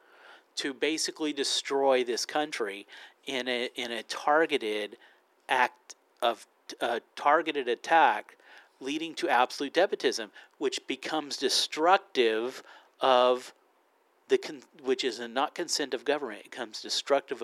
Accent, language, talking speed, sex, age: American, English, 120 wpm, male, 40-59